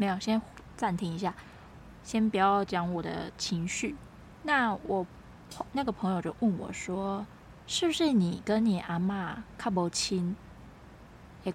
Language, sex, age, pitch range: Chinese, female, 20-39, 185-235 Hz